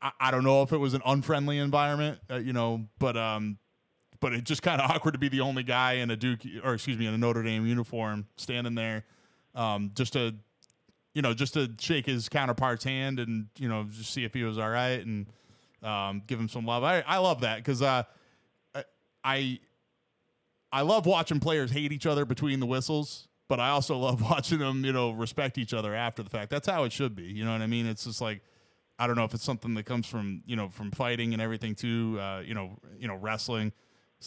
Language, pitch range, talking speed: English, 110-135 Hz, 235 wpm